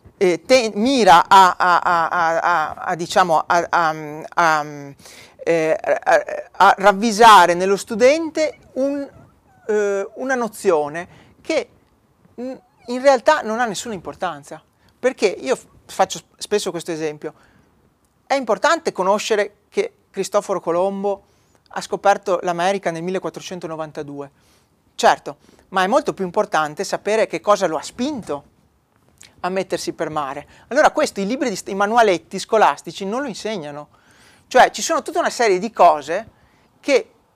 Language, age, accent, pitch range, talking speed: Italian, 40-59, native, 165-240 Hz, 110 wpm